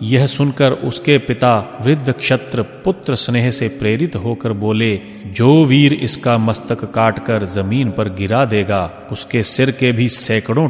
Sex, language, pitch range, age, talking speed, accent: male, Hindi, 105-130 Hz, 30-49, 150 wpm, native